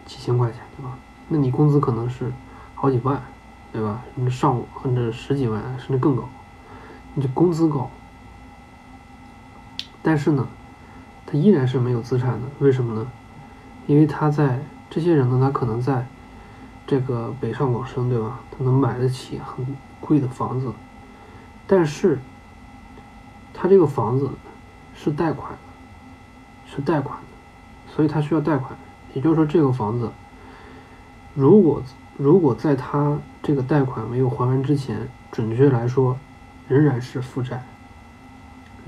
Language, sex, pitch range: Chinese, male, 120-140 Hz